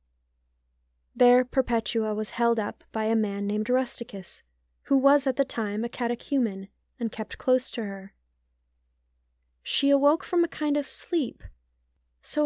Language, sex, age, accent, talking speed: English, female, 10-29, American, 145 wpm